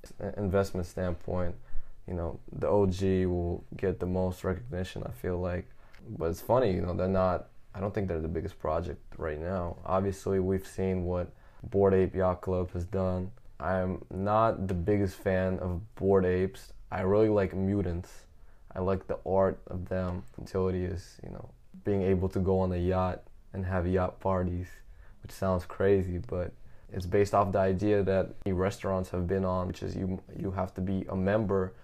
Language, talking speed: English, 185 wpm